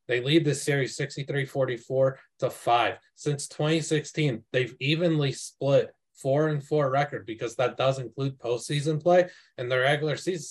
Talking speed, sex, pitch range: 145 wpm, male, 120-160 Hz